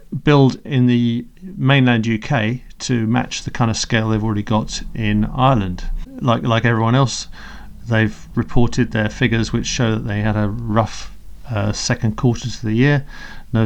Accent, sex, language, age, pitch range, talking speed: British, male, English, 40-59, 110-135 Hz, 165 wpm